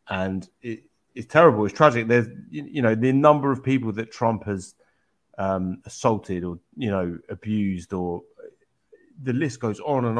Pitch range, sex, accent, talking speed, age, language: 100-135 Hz, male, British, 160 wpm, 30-49, English